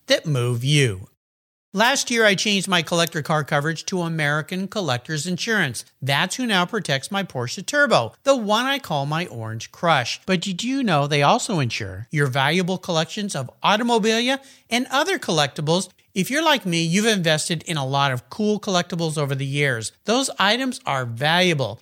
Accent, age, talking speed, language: American, 50-69, 175 wpm, English